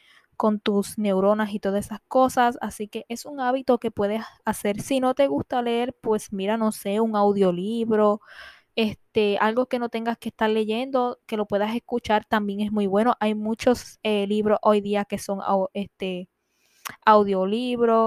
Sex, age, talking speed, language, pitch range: female, 10-29, 175 wpm, Spanish, 205-235 Hz